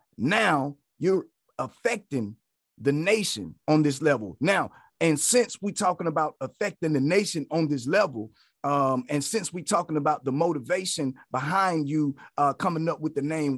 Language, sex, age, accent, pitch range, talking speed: English, male, 30-49, American, 145-185 Hz, 160 wpm